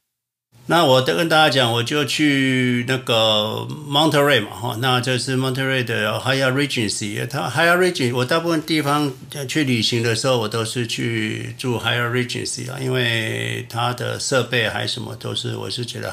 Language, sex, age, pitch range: Chinese, male, 60-79, 115-130 Hz